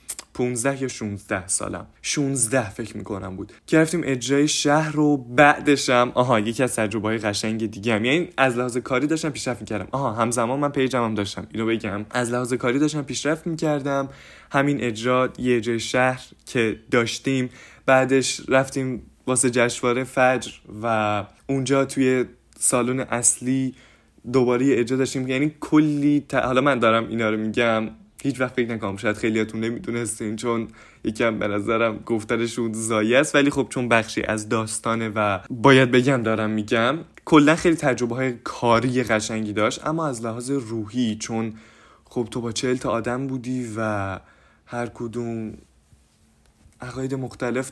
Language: Persian